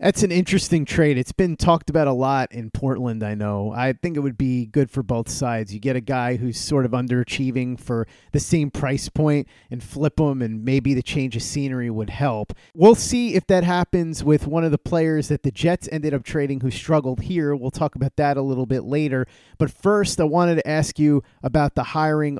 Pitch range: 130-160 Hz